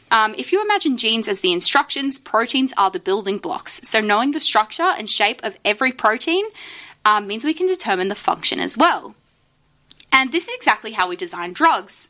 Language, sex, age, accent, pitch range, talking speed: English, female, 20-39, Australian, 210-325 Hz, 195 wpm